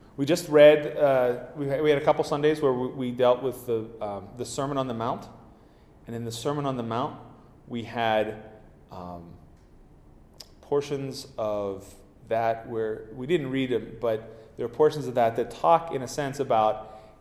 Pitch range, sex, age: 90-125 Hz, male, 30-49